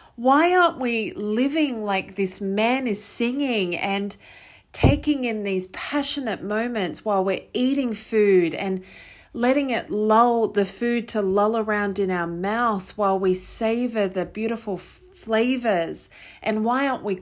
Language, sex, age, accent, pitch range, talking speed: English, female, 40-59, Australian, 195-245 Hz, 145 wpm